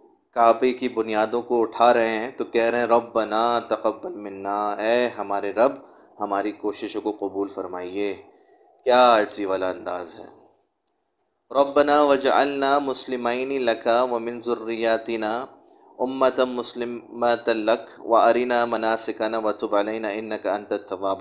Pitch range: 105-125 Hz